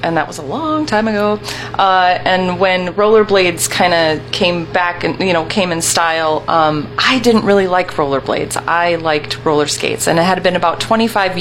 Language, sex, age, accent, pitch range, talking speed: English, female, 30-49, American, 155-185 Hz, 195 wpm